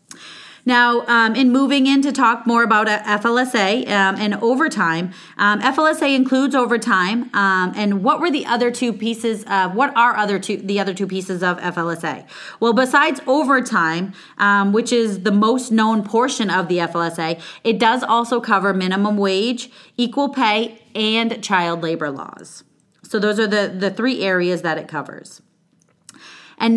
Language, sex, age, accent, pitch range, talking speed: English, female, 30-49, American, 190-235 Hz, 160 wpm